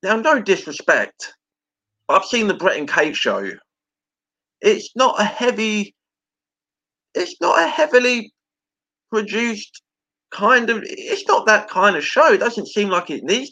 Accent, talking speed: British, 145 wpm